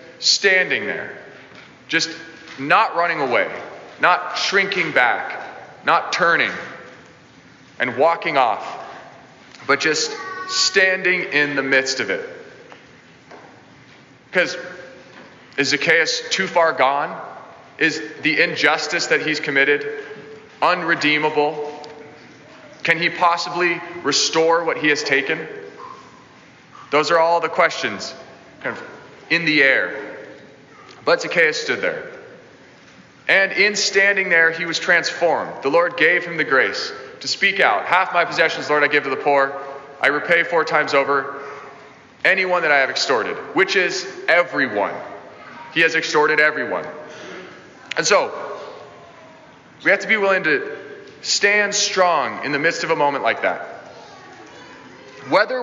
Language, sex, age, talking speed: English, male, 30-49, 125 wpm